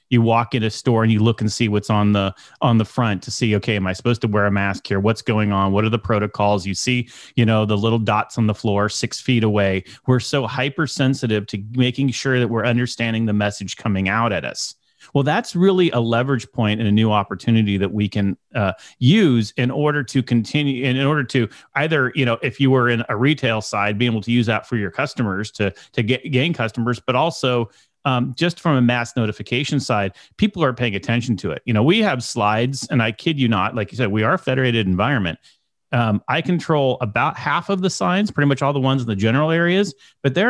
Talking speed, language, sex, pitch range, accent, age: 235 wpm, English, male, 110-140 Hz, American, 30-49